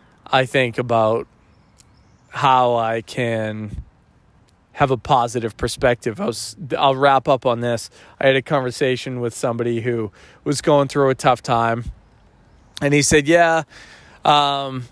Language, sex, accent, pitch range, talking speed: English, male, American, 120-145 Hz, 135 wpm